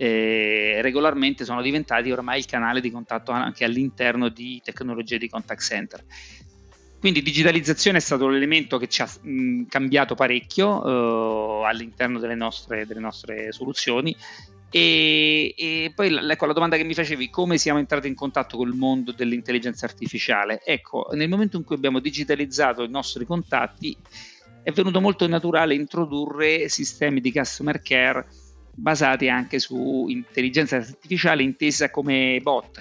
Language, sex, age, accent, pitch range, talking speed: Italian, male, 40-59, native, 120-155 Hz, 145 wpm